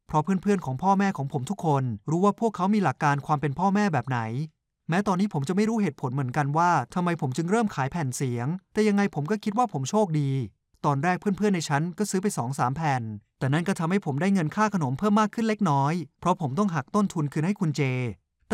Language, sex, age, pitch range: Thai, male, 20-39, 140-195 Hz